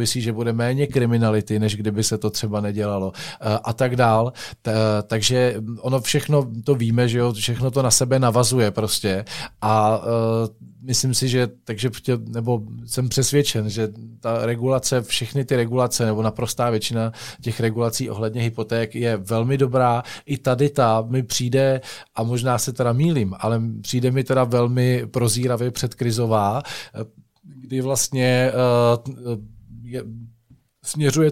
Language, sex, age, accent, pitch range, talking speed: Czech, male, 40-59, native, 115-130 Hz, 140 wpm